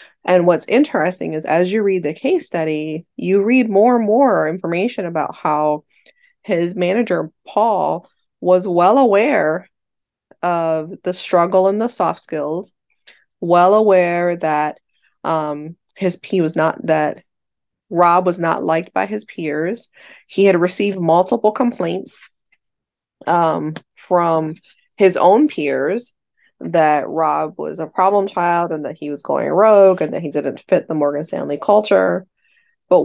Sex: female